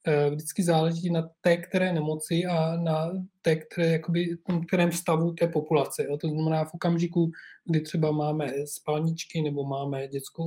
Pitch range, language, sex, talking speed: 150-175 Hz, Czech, male, 145 wpm